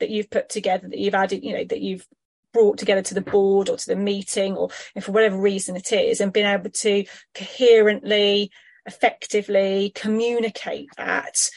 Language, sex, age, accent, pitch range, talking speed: English, female, 30-49, British, 205-240 Hz, 175 wpm